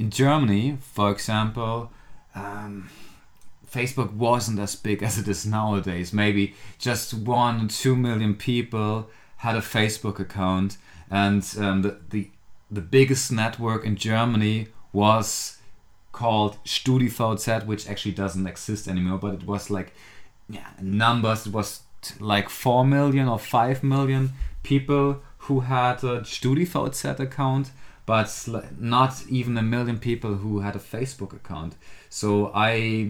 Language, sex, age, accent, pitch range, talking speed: English, male, 30-49, German, 100-125 Hz, 135 wpm